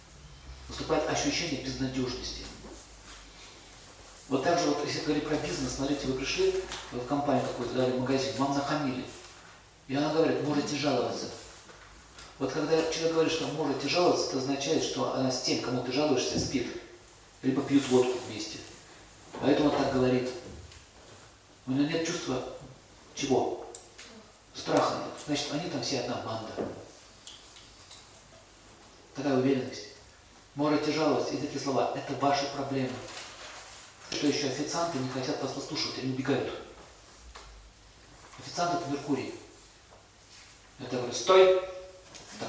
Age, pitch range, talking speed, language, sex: 40-59, 115-145 Hz, 125 wpm, Russian, male